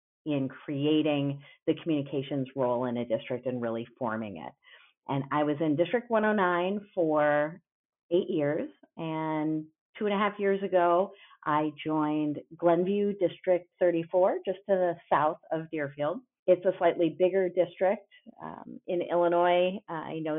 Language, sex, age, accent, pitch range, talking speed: English, female, 40-59, American, 150-185 Hz, 145 wpm